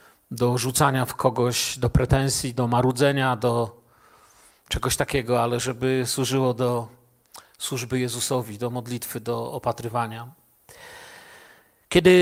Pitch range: 150-195 Hz